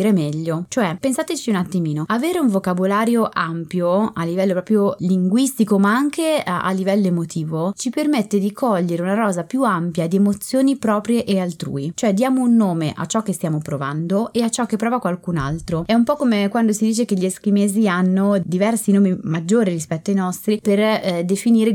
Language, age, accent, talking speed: Italian, 20-39, native, 190 wpm